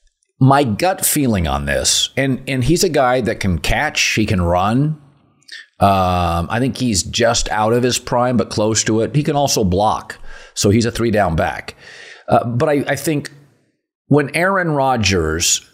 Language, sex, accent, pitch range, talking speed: English, male, American, 100-125 Hz, 180 wpm